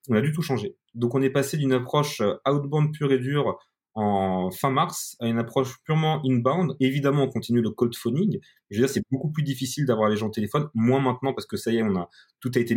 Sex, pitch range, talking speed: male, 100-130 Hz, 250 wpm